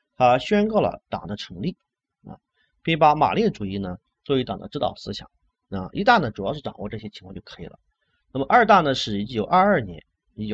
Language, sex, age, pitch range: Chinese, male, 30-49, 100-165 Hz